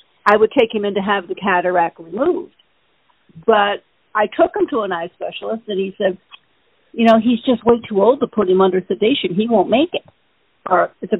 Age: 50-69